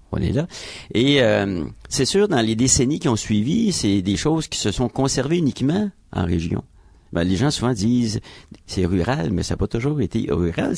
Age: 50-69